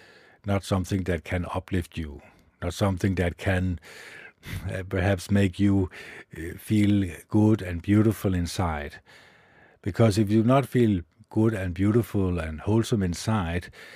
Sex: male